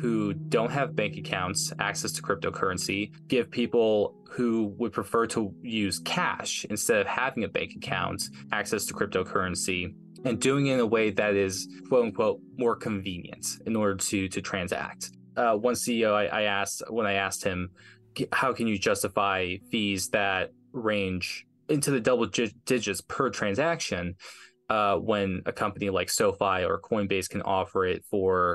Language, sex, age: English, male, 20-39